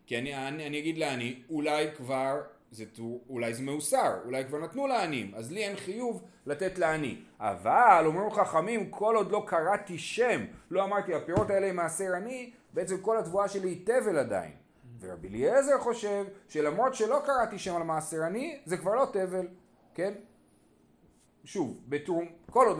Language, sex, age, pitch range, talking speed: Hebrew, male, 30-49, 125-205 Hz, 165 wpm